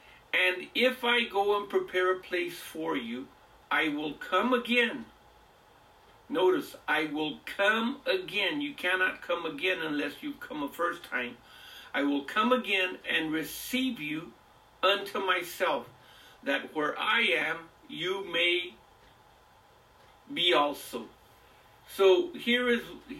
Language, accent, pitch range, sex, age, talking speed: English, American, 170-275 Hz, male, 60-79, 125 wpm